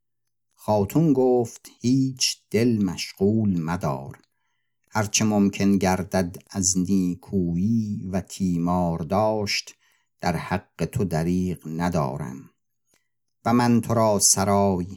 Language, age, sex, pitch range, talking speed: Persian, 50-69, male, 90-105 Hz, 95 wpm